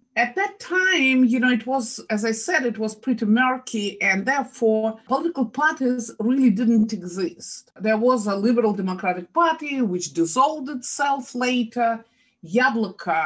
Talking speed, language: 145 wpm, English